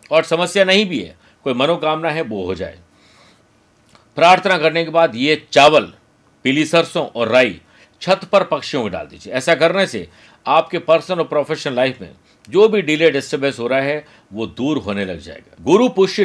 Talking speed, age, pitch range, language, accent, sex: 185 wpm, 50-69, 115-165 Hz, Hindi, native, male